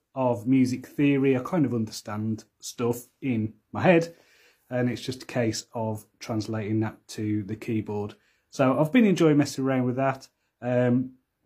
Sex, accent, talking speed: male, British, 160 wpm